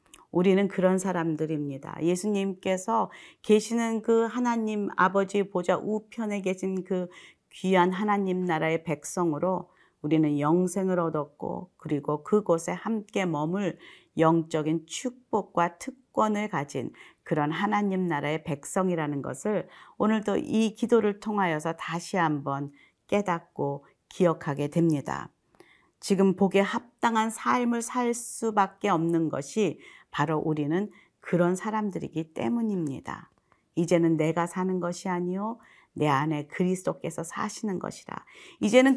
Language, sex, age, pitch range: Korean, female, 40-59, 165-215 Hz